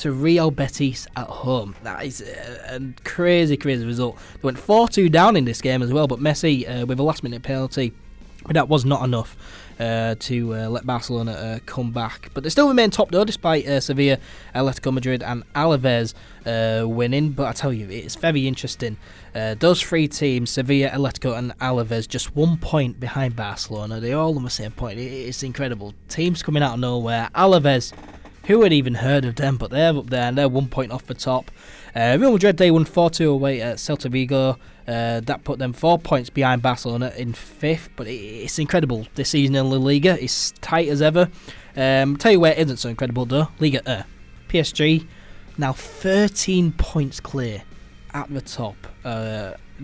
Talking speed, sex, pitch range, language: 195 wpm, male, 120-150 Hz, English